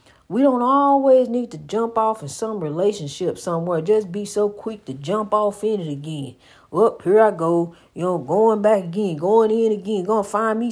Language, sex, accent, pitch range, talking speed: English, female, American, 195-275 Hz, 205 wpm